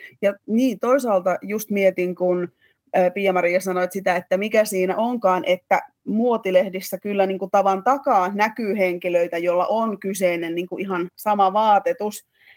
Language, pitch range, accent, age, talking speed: Finnish, 185-220 Hz, native, 20-39, 145 wpm